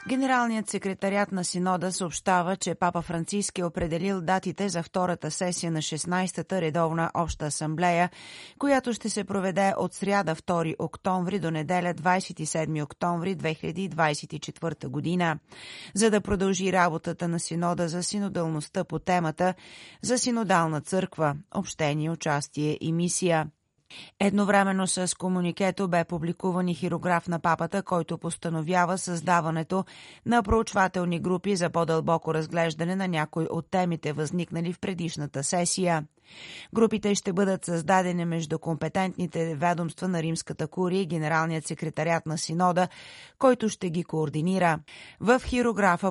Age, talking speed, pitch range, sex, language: 30-49, 125 wpm, 165-190 Hz, female, Bulgarian